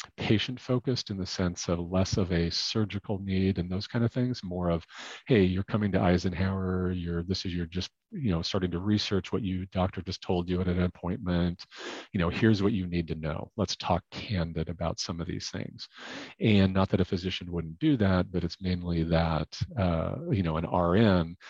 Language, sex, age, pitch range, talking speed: English, male, 40-59, 85-100 Hz, 205 wpm